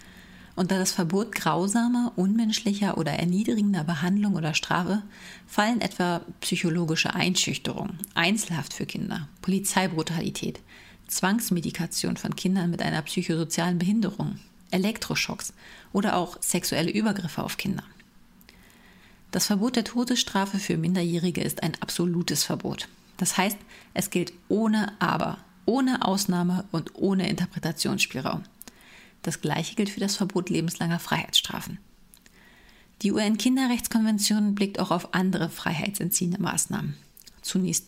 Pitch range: 180-205 Hz